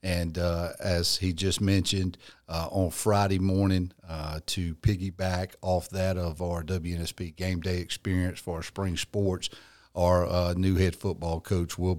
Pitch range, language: 90-100 Hz, English